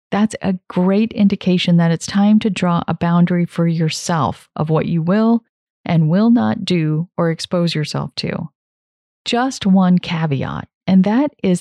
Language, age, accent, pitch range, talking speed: English, 30-49, American, 165-220 Hz, 160 wpm